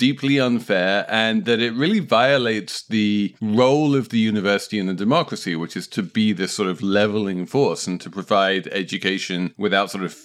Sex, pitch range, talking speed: male, 95-130 Hz, 180 wpm